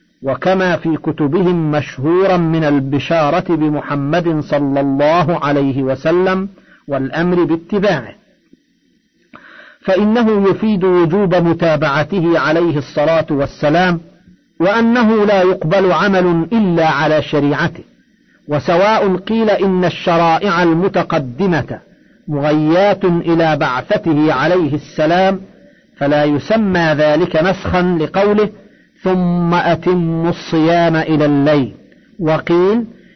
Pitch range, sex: 155-190 Hz, male